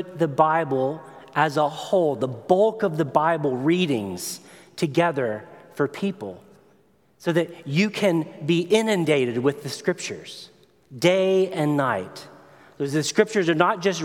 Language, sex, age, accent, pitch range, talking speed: English, male, 30-49, American, 140-175 Hz, 130 wpm